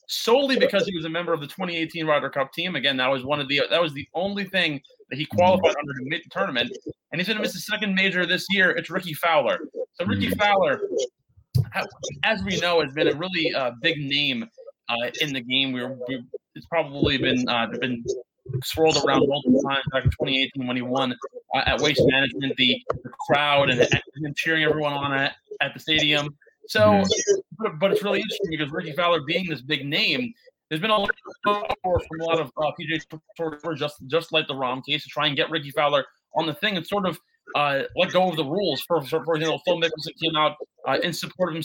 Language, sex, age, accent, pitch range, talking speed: English, male, 20-39, American, 145-190 Hz, 220 wpm